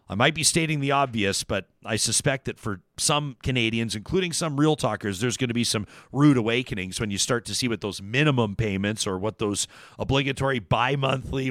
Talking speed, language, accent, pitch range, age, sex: 205 wpm, English, American, 115-150 Hz, 40-59, male